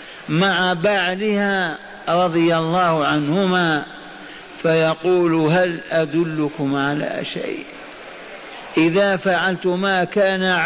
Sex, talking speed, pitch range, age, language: male, 75 wpm, 170-210 Hz, 50-69, Arabic